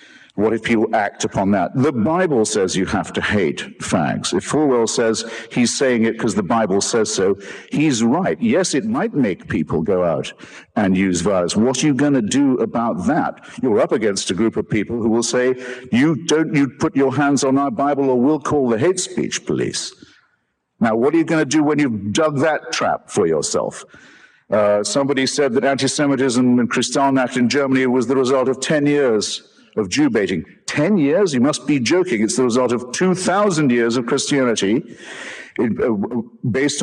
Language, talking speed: English, 190 wpm